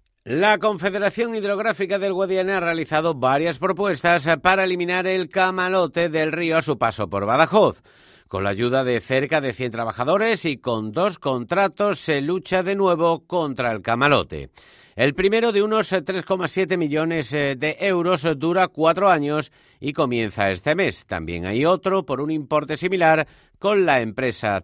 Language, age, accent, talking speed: Spanish, 50-69, Spanish, 155 wpm